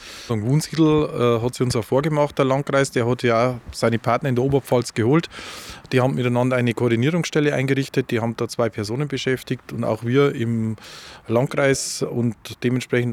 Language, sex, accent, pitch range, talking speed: German, male, Austrian, 120-140 Hz, 175 wpm